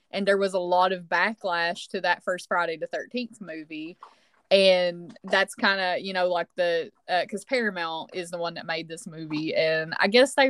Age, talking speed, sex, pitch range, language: 20-39, 205 wpm, female, 175-225 Hz, English